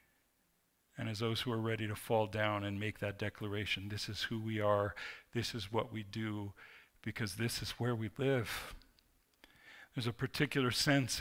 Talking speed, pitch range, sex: 175 wpm, 110-130 Hz, male